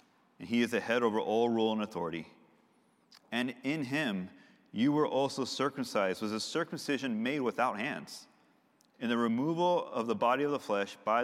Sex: male